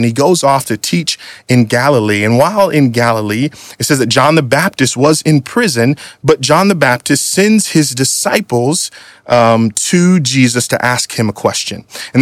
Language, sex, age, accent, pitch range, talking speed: English, male, 30-49, American, 120-180 Hz, 185 wpm